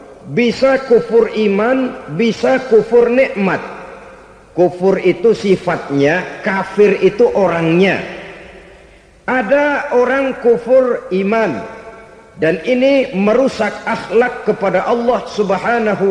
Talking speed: 85 wpm